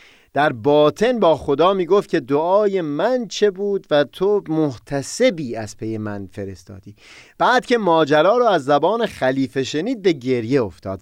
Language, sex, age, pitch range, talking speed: Persian, male, 30-49, 120-175 Hz, 150 wpm